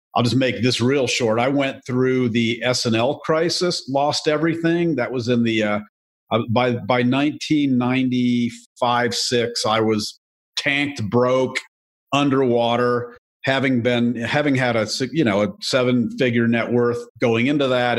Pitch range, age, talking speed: 115-135 Hz, 50-69, 150 wpm